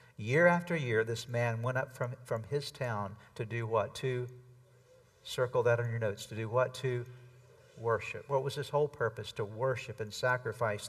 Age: 50-69